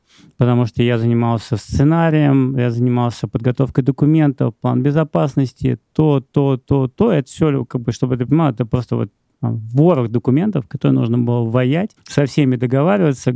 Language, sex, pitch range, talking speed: Russian, male, 120-145 Hz, 155 wpm